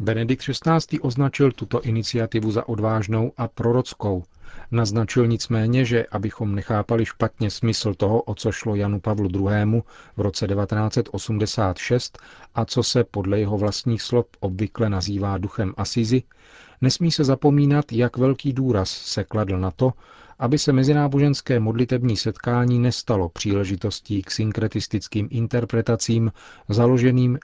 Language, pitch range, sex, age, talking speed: Czech, 100-120 Hz, male, 40-59, 125 wpm